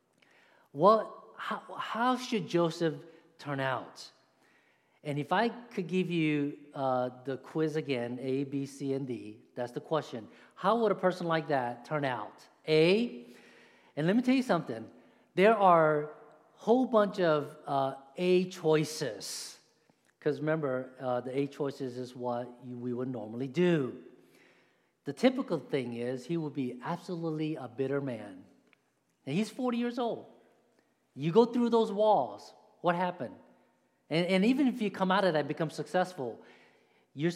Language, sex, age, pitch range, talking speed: English, male, 50-69, 135-185 Hz, 155 wpm